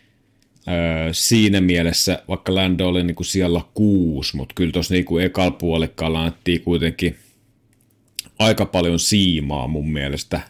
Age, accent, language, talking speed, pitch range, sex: 30-49, native, Finnish, 130 wpm, 80-105 Hz, male